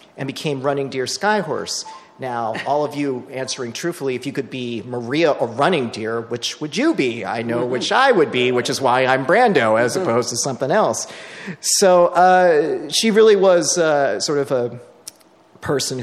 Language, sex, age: English, male, 40-59